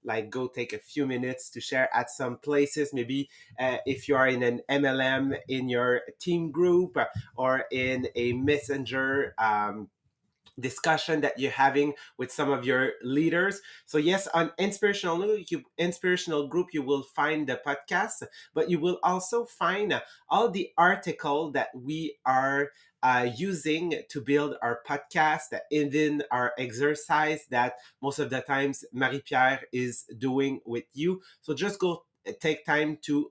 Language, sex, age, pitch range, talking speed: English, male, 30-49, 130-165 Hz, 155 wpm